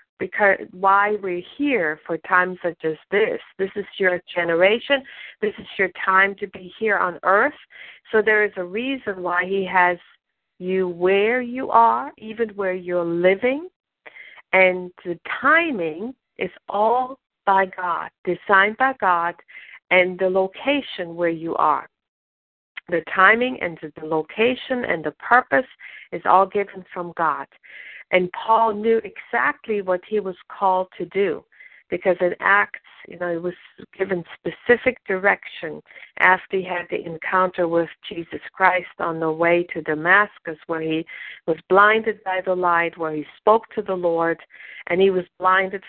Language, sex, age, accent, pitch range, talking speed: English, female, 50-69, American, 175-210 Hz, 155 wpm